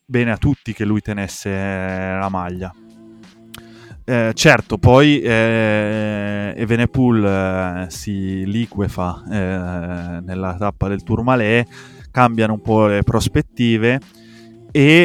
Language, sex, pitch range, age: Italian, male, 100-125 Hz, 20-39